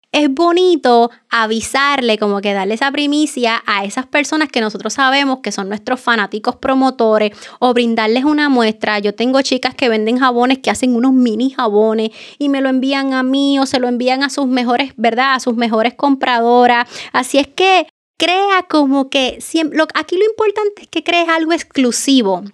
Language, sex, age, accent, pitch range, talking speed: Spanish, female, 20-39, American, 230-295 Hz, 175 wpm